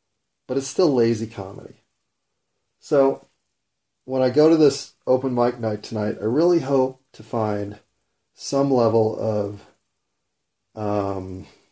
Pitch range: 110-125 Hz